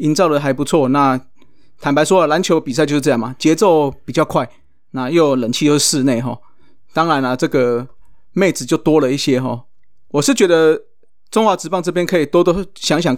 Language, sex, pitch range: Chinese, male, 135-170 Hz